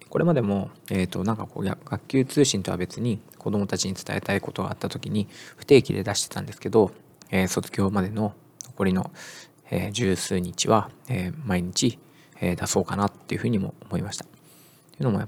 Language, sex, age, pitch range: Japanese, male, 20-39, 95-125 Hz